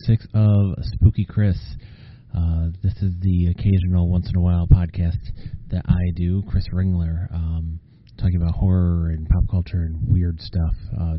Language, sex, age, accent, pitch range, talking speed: English, male, 30-49, American, 90-110 Hz, 160 wpm